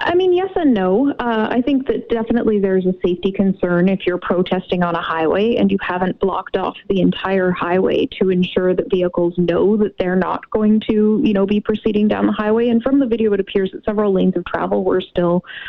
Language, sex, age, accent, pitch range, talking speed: English, female, 20-39, American, 180-215 Hz, 220 wpm